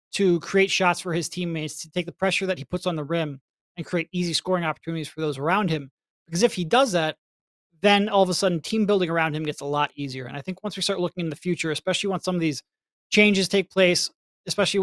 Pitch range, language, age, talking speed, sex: 155-185 Hz, English, 30-49, 250 wpm, male